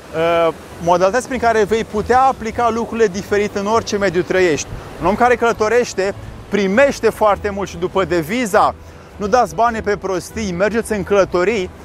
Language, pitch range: Romanian, 185-225 Hz